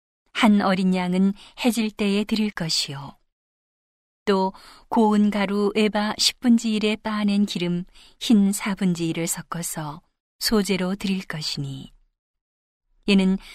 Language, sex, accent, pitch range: Korean, female, native, 180-210 Hz